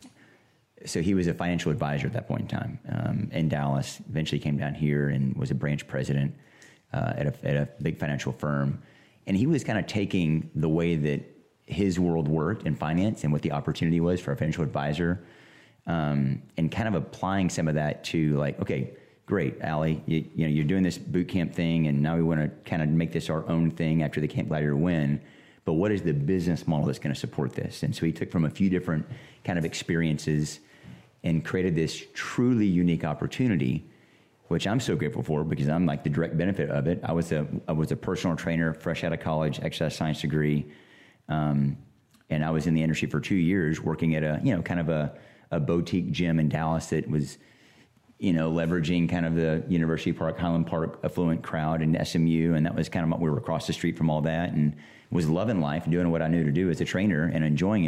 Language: English